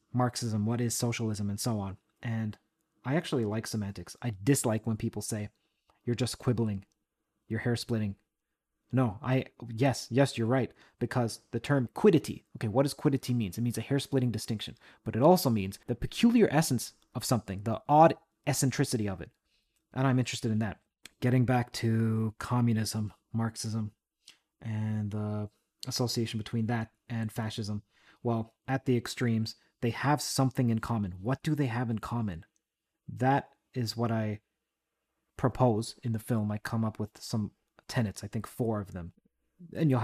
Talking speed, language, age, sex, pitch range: 165 wpm, English, 30-49, male, 110-130 Hz